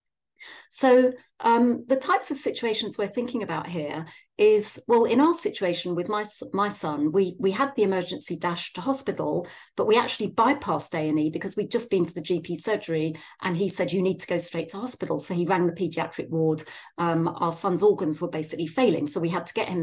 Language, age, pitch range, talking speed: English, 40-59, 165-220 Hz, 210 wpm